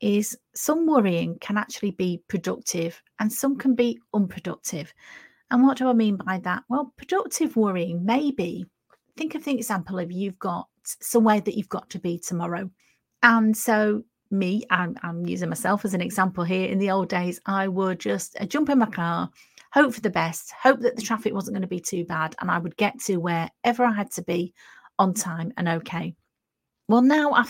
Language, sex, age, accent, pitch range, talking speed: English, female, 40-59, British, 180-230 Hz, 200 wpm